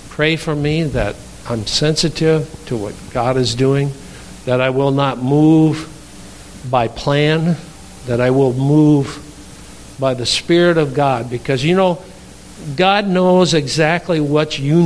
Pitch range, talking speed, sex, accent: 115-155 Hz, 140 wpm, male, American